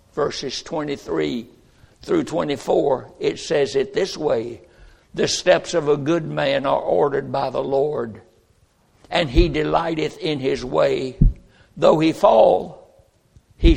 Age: 60-79